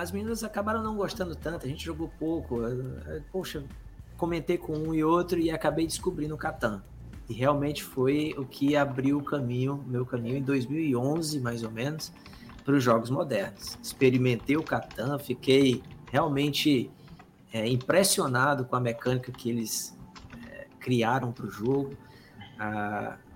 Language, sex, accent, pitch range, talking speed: Portuguese, male, Brazilian, 115-145 Hz, 150 wpm